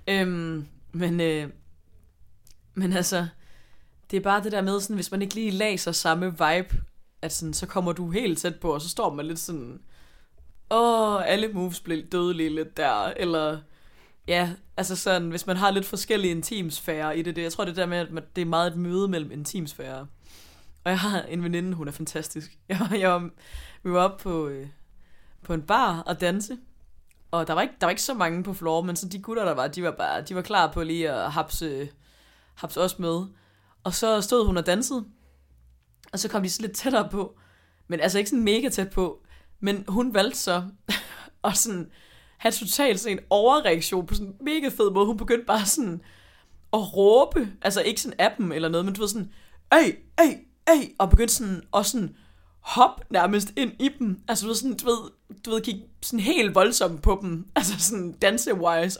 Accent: native